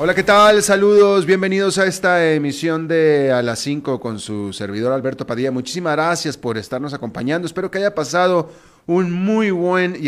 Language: Spanish